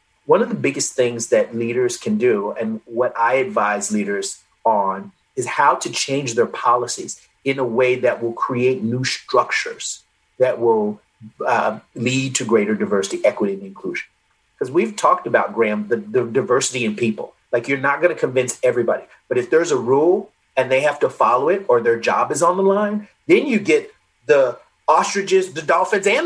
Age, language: 30-49, English